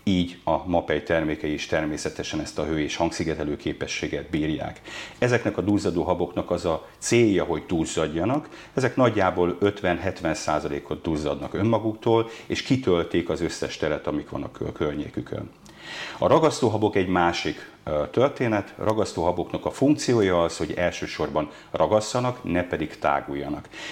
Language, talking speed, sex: Hungarian, 135 wpm, male